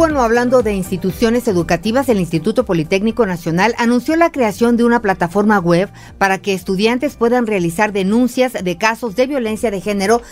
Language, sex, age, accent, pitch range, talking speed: Spanish, female, 40-59, Mexican, 185-245 Hz, 155 wpm